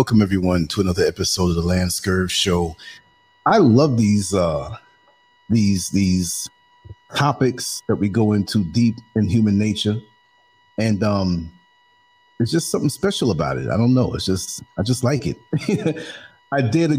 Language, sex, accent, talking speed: English, male, American, 155 wpm